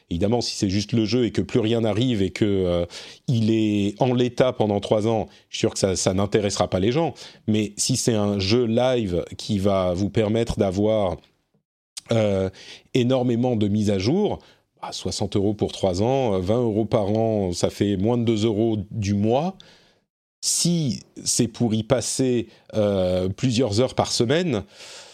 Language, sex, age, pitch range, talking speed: French, male, 40-59, 95-120 Hz, 180 wpm